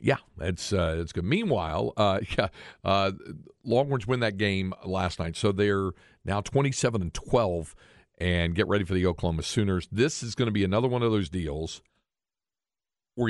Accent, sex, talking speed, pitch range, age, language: American, male, 170 wpm, 90-115 Hz, 50-69, English